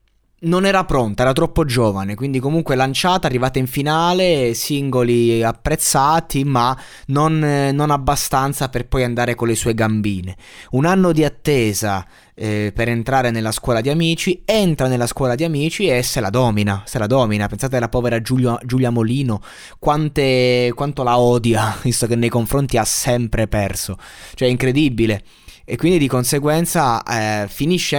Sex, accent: male, native